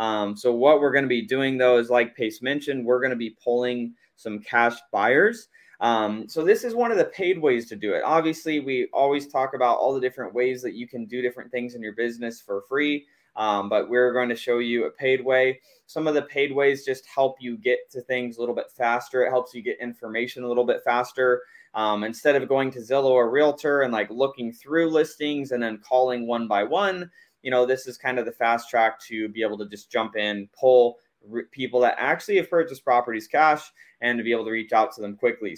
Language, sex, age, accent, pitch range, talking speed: English, male, 20-39, American, 115-140 Hz, 235 wpm